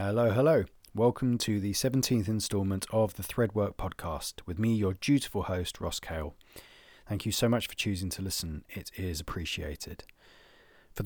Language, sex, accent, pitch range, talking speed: English, male, British, 90-110 Hz, 165 wpm